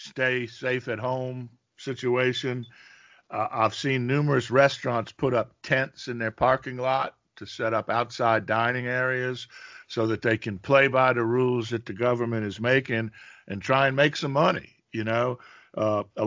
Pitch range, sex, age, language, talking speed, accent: 115-135 Hz, male, 50-69, English, 170 wpm, American